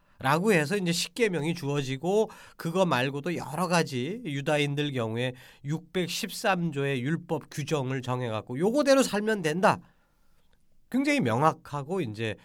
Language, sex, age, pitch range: Korean, male, 40-59, 130-210 Hz